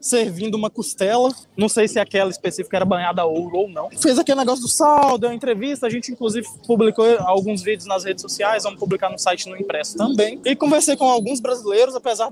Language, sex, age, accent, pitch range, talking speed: Portuguese, male, 20-39, Brazilian, 195-255 Hz, 210 wpm